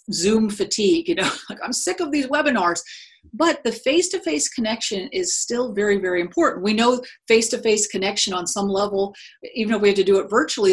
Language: English